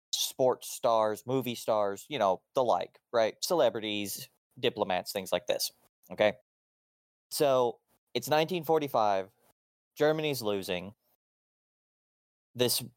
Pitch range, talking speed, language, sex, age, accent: 100-130 Hz, 95 wpm, English, male, 20-39, American